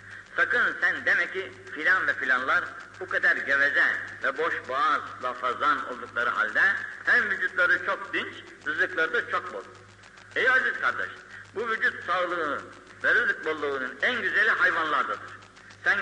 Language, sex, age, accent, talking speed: Turkish, male, 60-79, native, 135 wpm